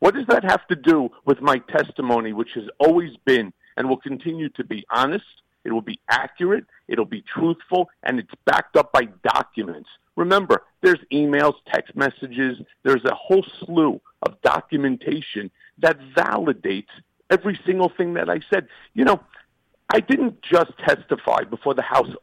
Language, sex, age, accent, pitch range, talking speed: English, male, 50-69, American, 130-190 Hz, 160 wpm